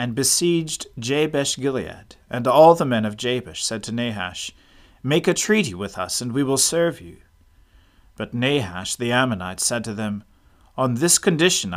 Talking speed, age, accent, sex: 165 wpm, 40-59, American, male